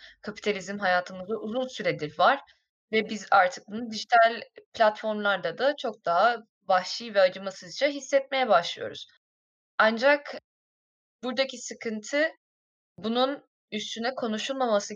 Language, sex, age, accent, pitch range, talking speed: Turkish, female, 10-29, native, 200-260 Hz, 100 wpm